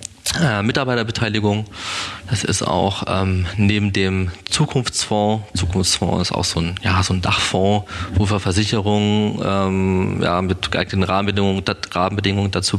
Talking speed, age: 115 wpm, 20-39